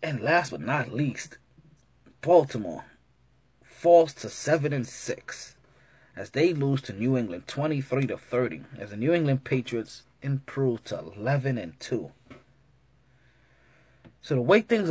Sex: male